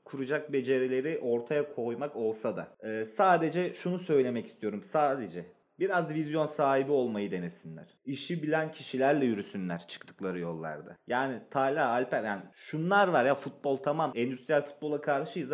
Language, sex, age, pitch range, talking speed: Turkish, male, 30-49, 120-150 Hz, 130 wpm